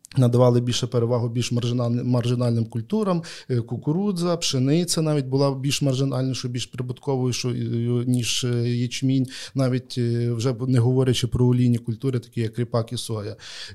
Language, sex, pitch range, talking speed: Ukrainian, male, 115-130 Hz, 120 wpm